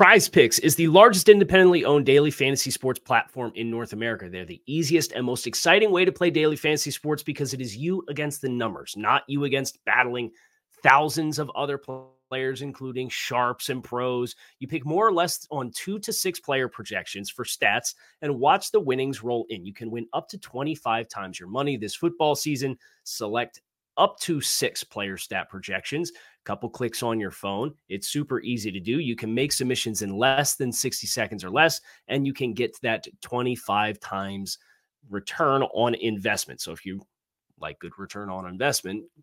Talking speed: 185 wpm